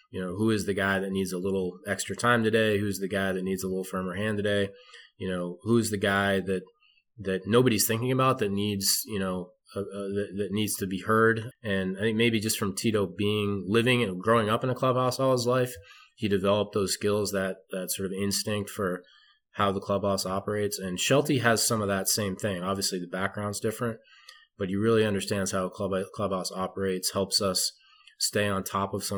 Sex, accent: male, American